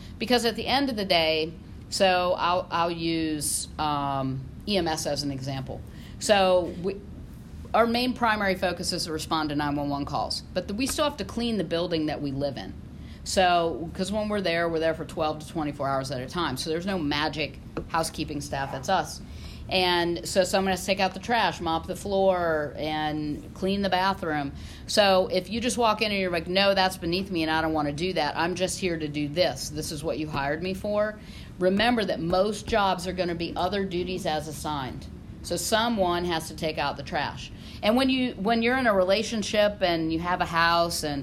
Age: 50-69